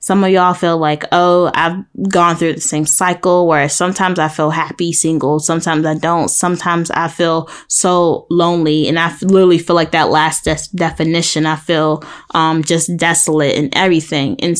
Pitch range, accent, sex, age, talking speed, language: 160-180 Hz, American, female, 10-29, 175 wpm, English